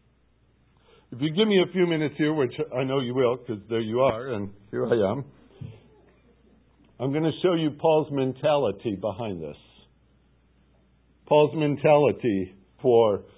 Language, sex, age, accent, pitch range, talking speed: English, male, 60-79, American, 115-155 Hz, 150 wpm